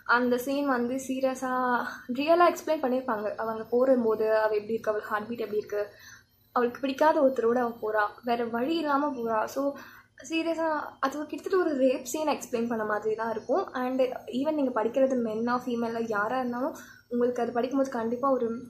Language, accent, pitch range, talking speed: Tamil, native, 230-280 Hz, 170 wpm